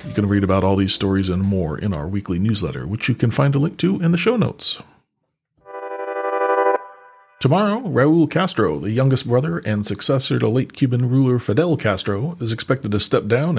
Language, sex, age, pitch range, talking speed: English, male, 40-59, 100-125 Hz, 190 wpm